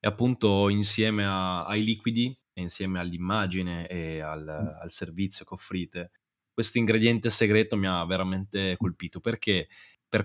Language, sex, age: Italian, male, 20-39